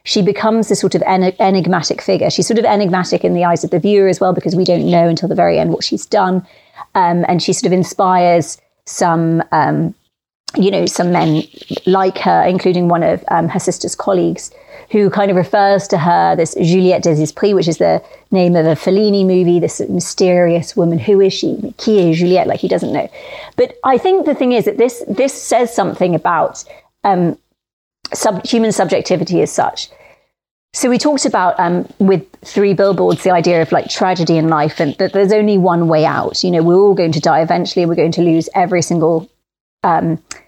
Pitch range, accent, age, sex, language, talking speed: 170-200 Hz, British, 40-59, female, English, 205 wpm